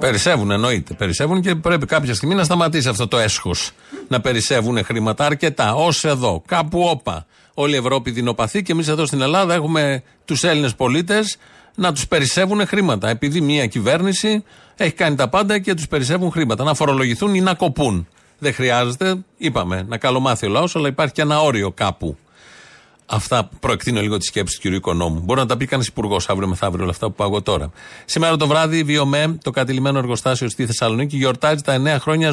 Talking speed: 185 wpm